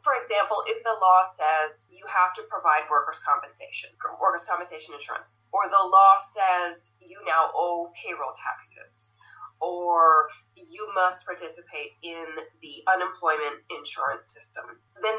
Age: 30-49